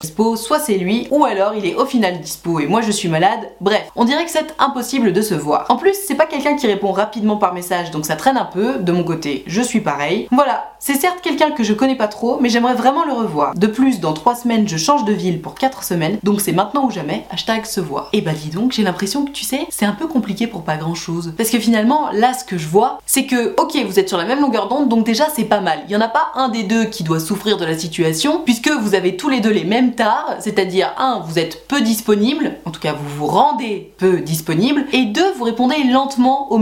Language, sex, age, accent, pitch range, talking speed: French, female, 20-39, French, 180-245 Hz, 265 wpm